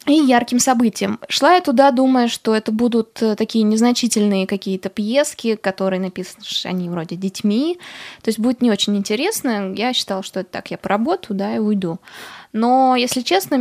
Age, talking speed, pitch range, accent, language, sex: 20-39, 170 wpm, 200-245 Hz, native, Russian, female